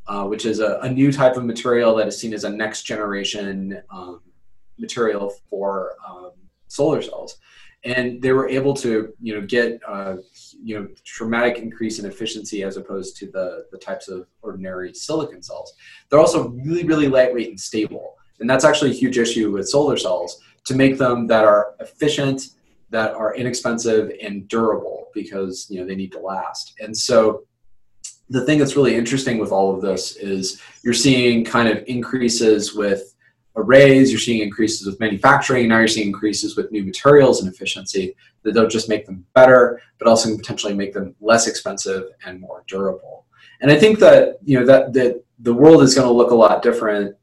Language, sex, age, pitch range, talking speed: English, male, 20-39, 100-125 Hz, 185 wpm